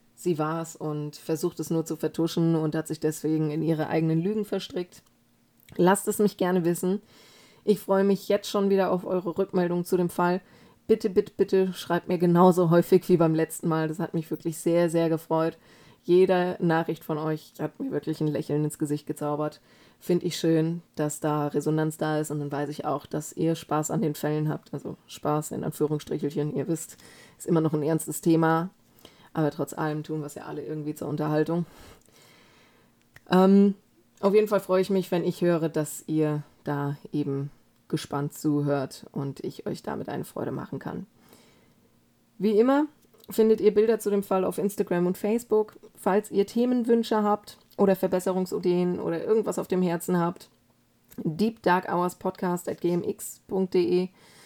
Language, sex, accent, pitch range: German, female, German, 155-190 Hz